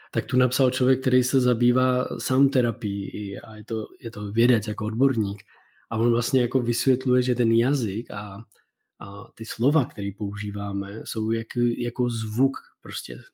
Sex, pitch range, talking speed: male, 115-135 Hz, 150 wpm